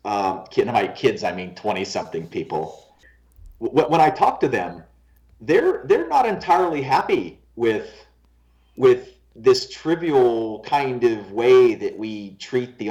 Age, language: 40-59, English